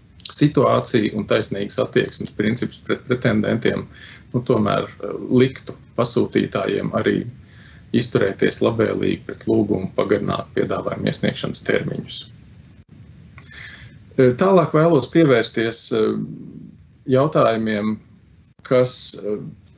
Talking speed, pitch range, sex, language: 75 wpm, 105-135 Hz, male, English